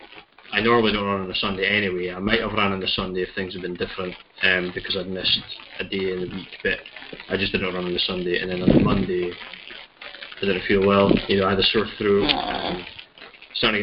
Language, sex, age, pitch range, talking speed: English, male, 20-39, 95-105 Hz, 235 wpm